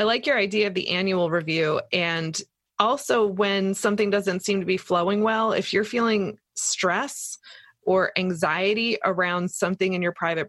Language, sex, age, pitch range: English, female, 20-39, 185-220 Hz